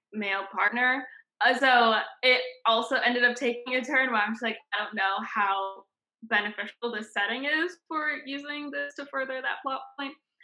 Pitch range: 195-250 Hz